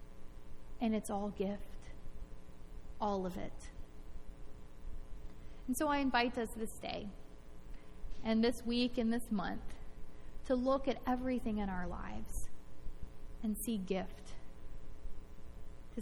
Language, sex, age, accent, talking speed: English, female, 20-39, American, 115 wpm